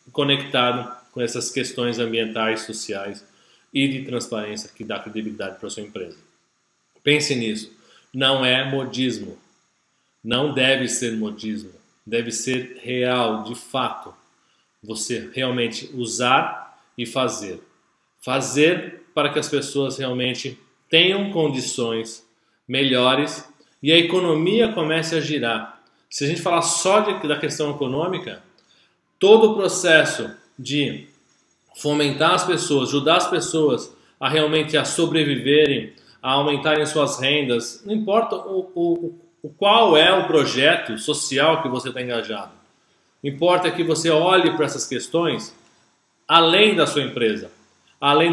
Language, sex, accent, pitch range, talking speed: Portuguese, male, Brazilian, 120-155 Hz, 125 wpm